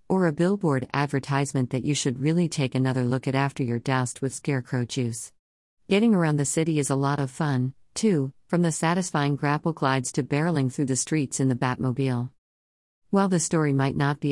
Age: 50-69